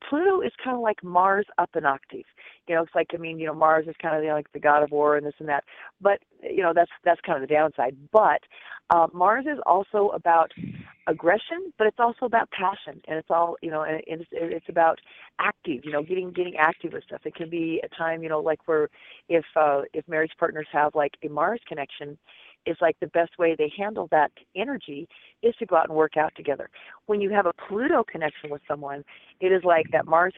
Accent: American